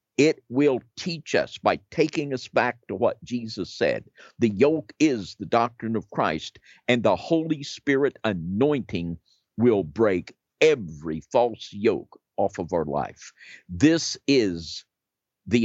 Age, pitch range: 50-69, 90-130 Hz